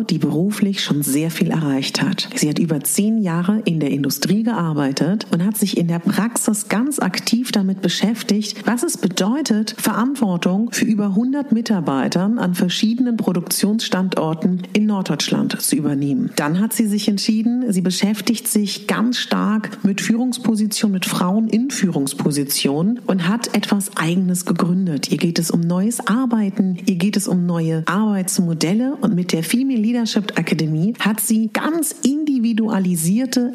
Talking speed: 150 wpm